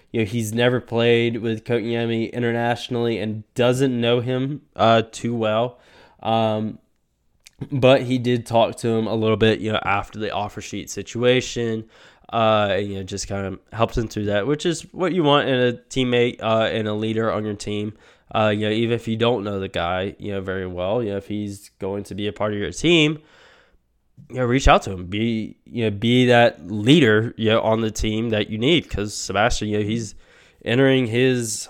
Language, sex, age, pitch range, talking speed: English, male, 10-29, 105-125 Hz, 210 wpm